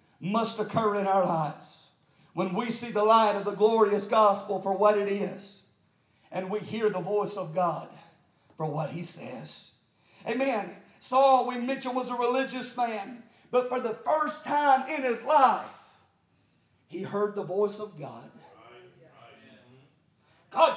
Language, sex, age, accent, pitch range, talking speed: English, male, 40-59, American, 205-275 Hz, 150 wpm